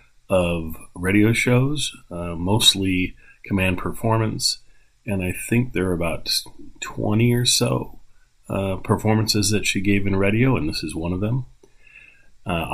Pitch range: 85-110 Hz